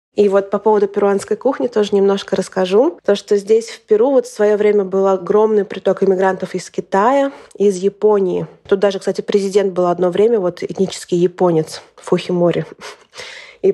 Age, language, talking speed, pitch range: 20-39, Russian, 165 wpm, 195-225 Hz